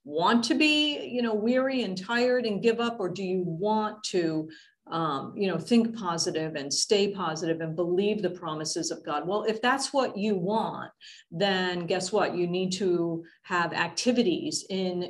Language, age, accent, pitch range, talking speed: English, 50-69, American, 170-230 Hz, 180 wpm